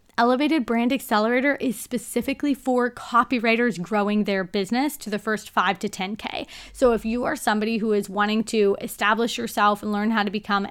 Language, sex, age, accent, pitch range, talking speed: English, female, 20-39, American, 210-255 Hz, 180 wpm